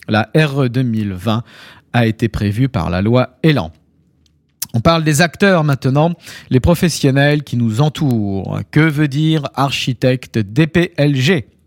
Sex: male